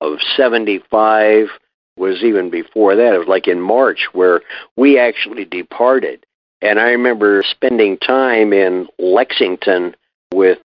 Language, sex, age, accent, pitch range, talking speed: English, male, 50-69, American, 105-140 Hz, 130 wpm